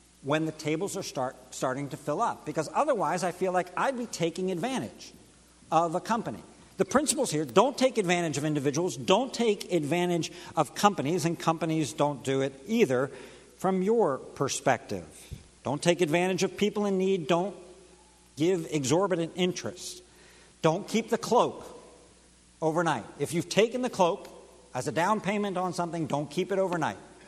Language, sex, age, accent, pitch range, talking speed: English, male, 60-79, American, 130-205 Hz, 165 wpm